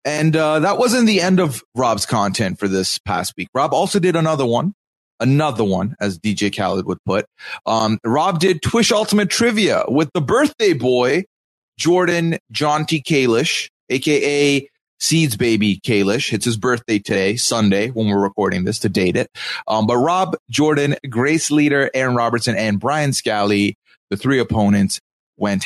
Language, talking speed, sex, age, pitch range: English, 165 wpm, male, 30-49, 110-160 Hz